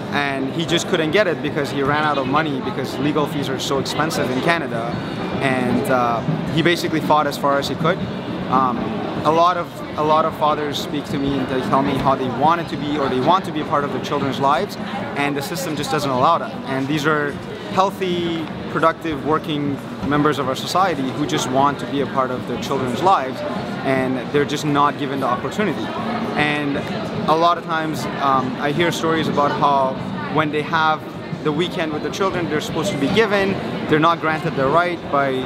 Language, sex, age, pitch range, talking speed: English, male, 30-49, 140-165 Hz, 210 wpm